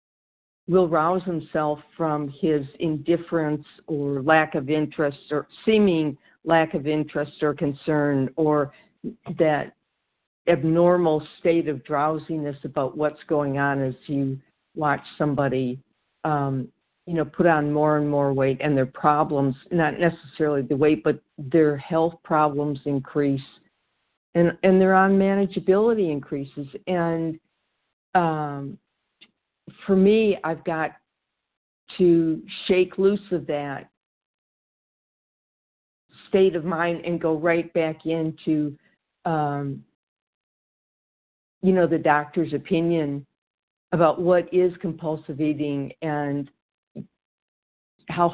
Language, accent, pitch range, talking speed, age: English, American, 145-170 Hz, 110 wpm, 60-79